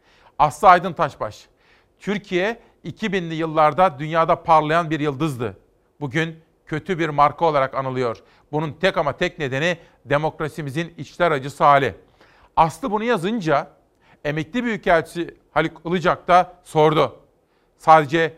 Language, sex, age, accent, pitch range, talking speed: Turkish, male, 50-69, native, 140-170 Hz, 115 wpm